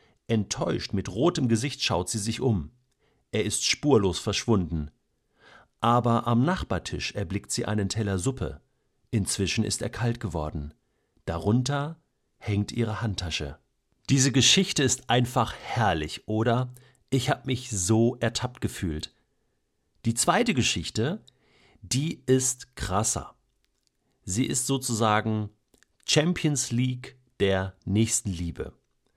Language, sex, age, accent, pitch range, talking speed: German, male, 50-69, German, 100-130 Hz, 115 wpm